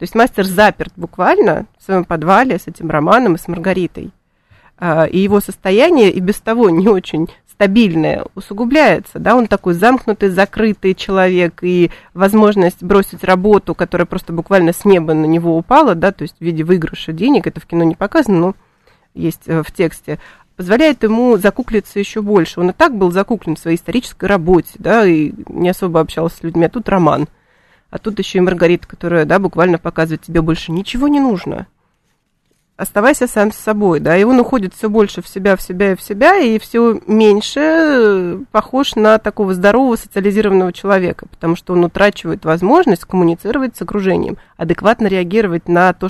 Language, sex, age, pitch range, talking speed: Russian, female, 30-49, 170-210 Hz, 175 wpm